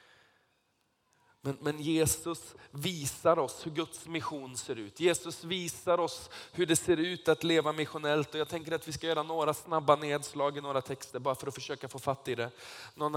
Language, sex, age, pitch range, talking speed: Swedish, male, 20-39, 120-150 Hz, 190 wpm